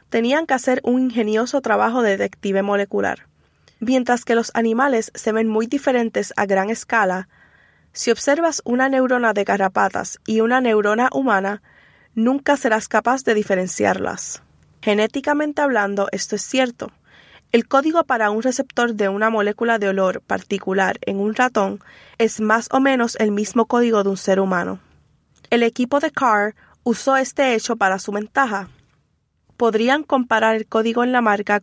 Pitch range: 205-255 Hz